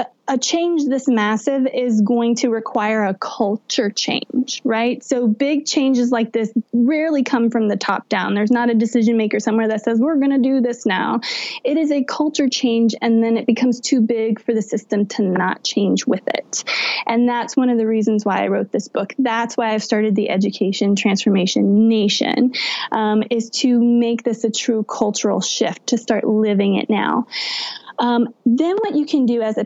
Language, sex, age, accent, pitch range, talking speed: English, female, 20-39, American, 220-270 Hz, 195 wpm